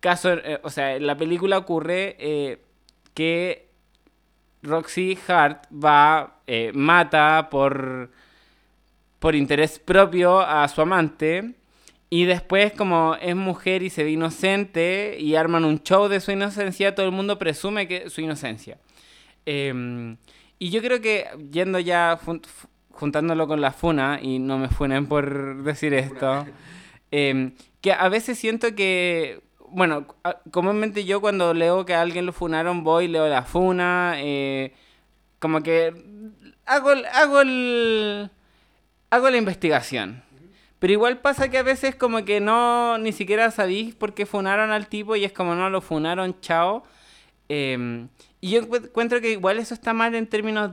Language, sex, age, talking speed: Spanish, male, 20-39, 155 wpm